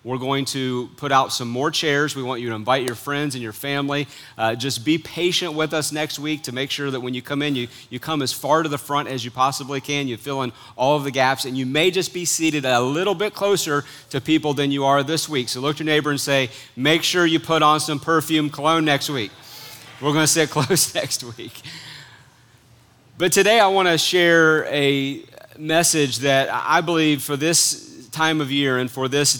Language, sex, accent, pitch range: English, male, American, 130-155 Hz